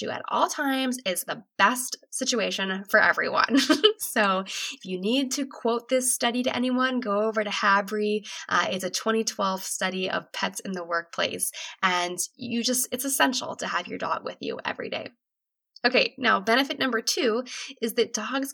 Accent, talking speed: American, 175 wpm